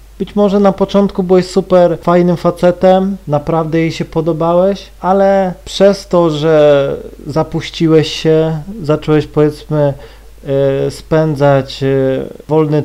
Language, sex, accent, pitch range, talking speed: Polish, male, native, 140-175 Hz, 105 wpm